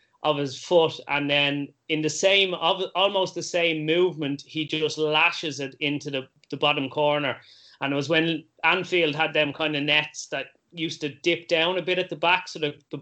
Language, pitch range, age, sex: English, 140-160 Hz, 30-49, male